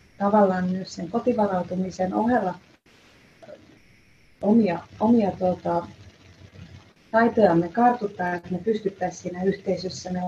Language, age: Finnish, 30-49